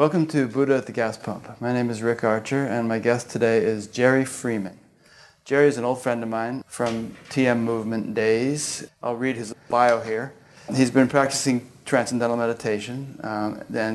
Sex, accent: male, American